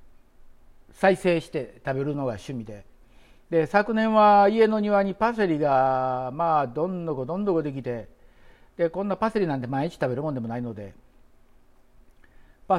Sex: male